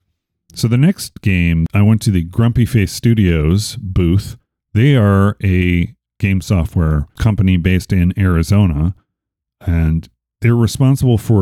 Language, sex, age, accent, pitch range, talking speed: English, male, 40-59, American, 85-110 Hz, 130 wpm